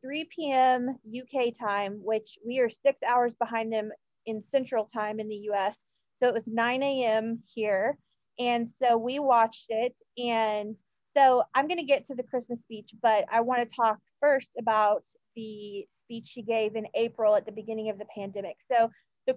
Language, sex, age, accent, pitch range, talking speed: English, female, 30-49, American, 215-250 Hz, 175 wpm